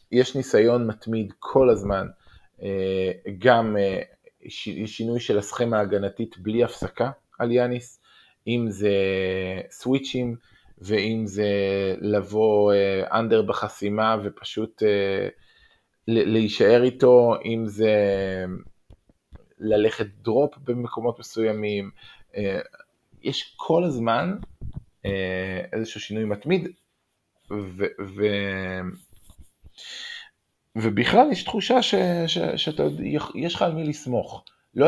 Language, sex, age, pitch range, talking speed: Hebrew, male, 20-39, 100-125 Hz, 85 wpm